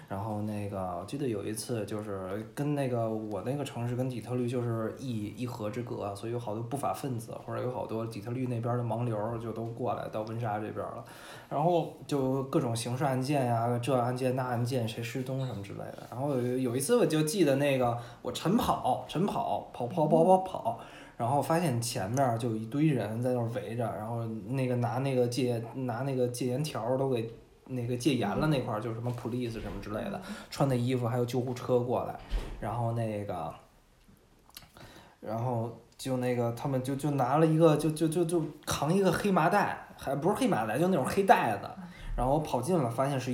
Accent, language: native, Chinese